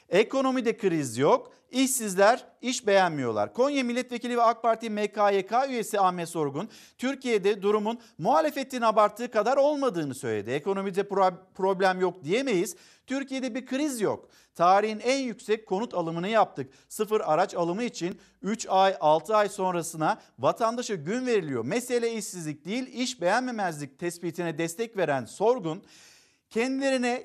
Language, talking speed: Turkish, 130 wpm